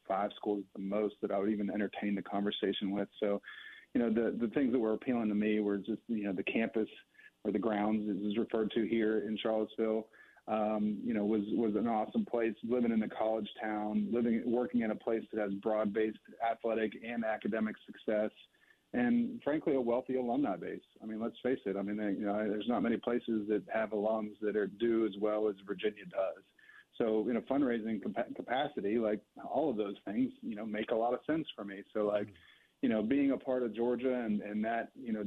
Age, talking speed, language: 40-59, 215 wpm, English